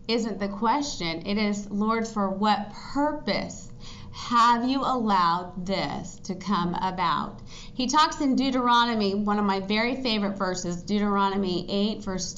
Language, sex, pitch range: English, female, 195-245 Hz